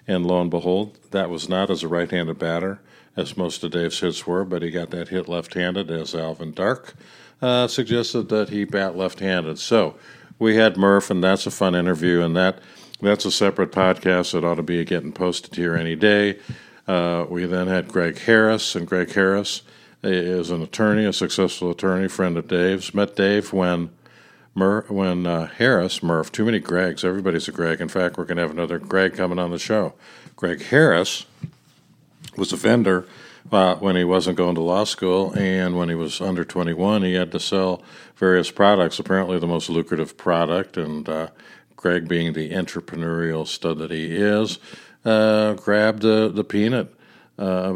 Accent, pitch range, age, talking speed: American, 85-100 Hz, 50-69, 180 wpm